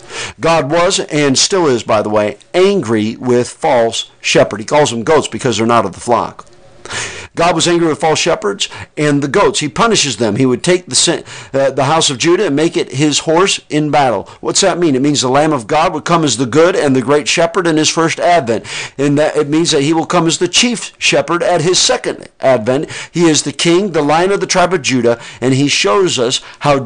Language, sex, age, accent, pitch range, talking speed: English, male, 50-69, American, 125-160 Hz, 235 wpm